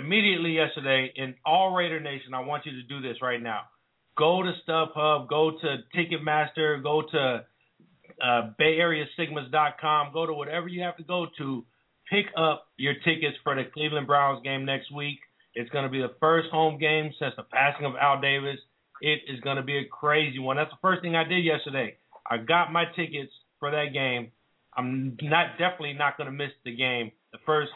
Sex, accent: male, American